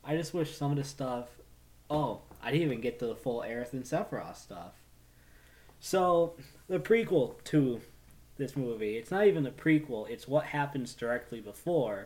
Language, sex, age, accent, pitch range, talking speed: English, male, 20-39, American, 115-155 Hz, 175 wpm